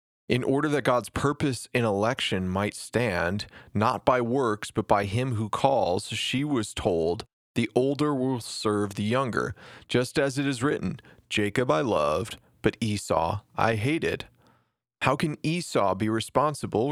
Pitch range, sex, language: 110-140 Hz, male, English